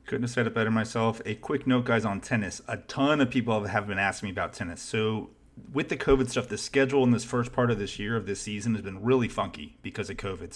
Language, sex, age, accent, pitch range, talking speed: English, male, 30-49, American, 100-120 Hz, 260 wpm